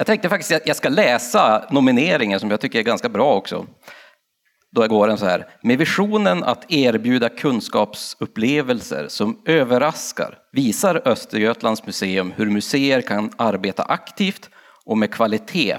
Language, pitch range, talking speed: Swedish, 105-170 Hz, 140 wpm